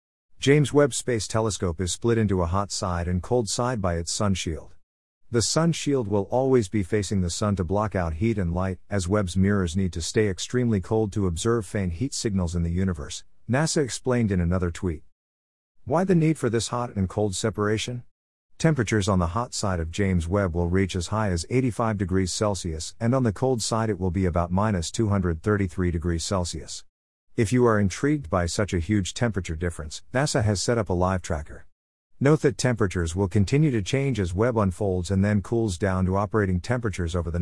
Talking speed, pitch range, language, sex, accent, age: 205 wpm, 90-115 Hz, English, male, American, 50-69